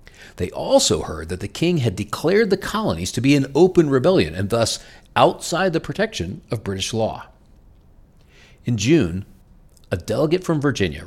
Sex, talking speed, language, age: male, 155 wpm, English, 40-59